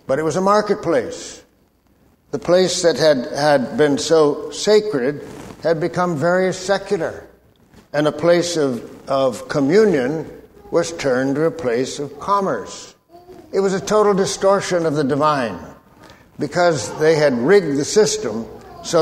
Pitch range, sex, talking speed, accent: 145-180 Hz, male, 140 wpm, American